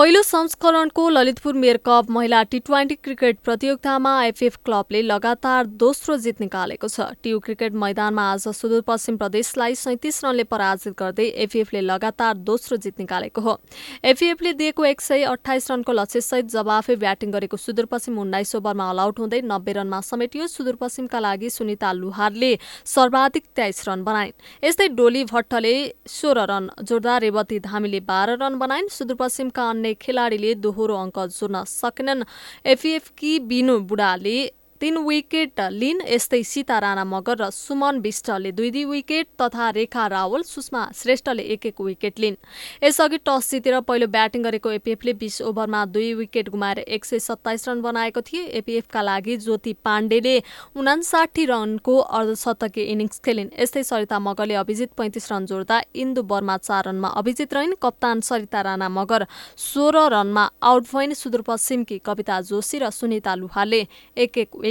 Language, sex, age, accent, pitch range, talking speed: English, female, 20-39, Indian, 210-260 Hz, 100 wpm